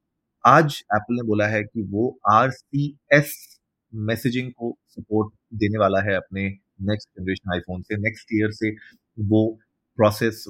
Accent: native